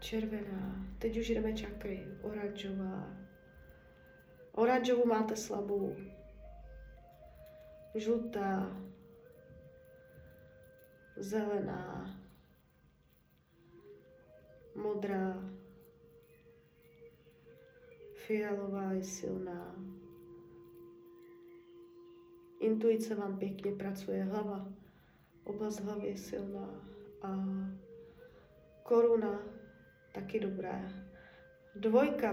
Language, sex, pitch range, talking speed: Czech, female, 175-230 Hz, 55 wpm